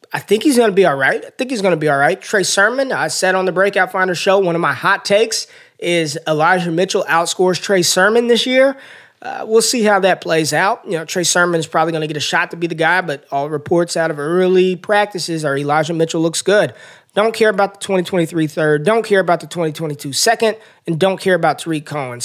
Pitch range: 150-190 Hz